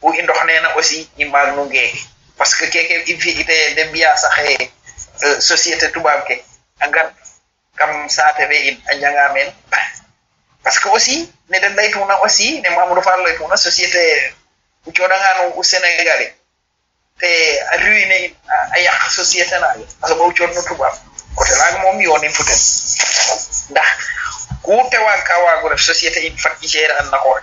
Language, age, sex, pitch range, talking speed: English, 30-49, male, 140-190 Hz, 50 wpm